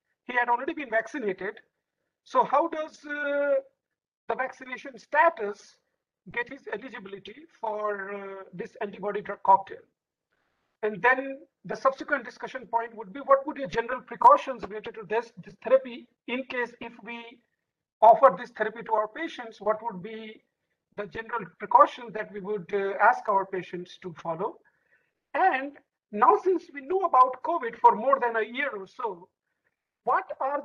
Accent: Indian